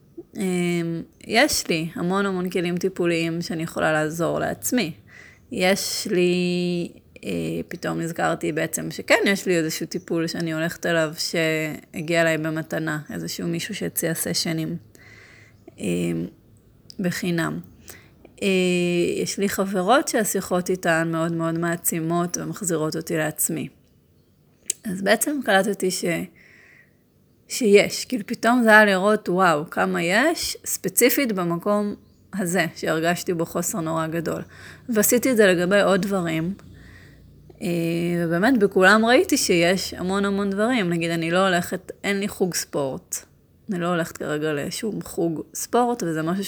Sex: female